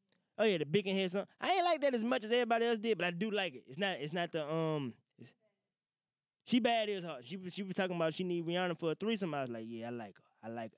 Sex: male